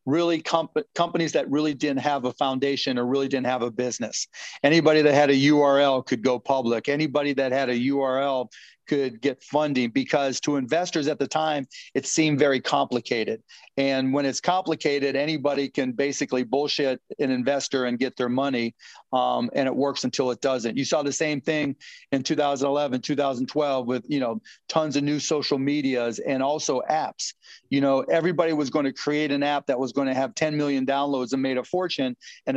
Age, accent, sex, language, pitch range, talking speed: 40-59, American, male, English, 130-150 Hz, 190 wpm